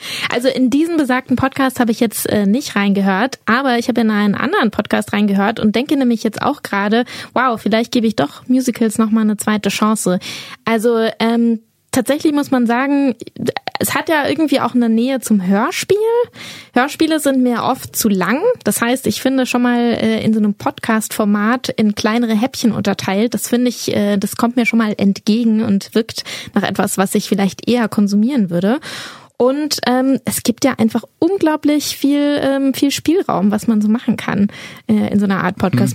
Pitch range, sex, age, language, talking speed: 210-255 Hz, female, 20-39, German, 190 wpm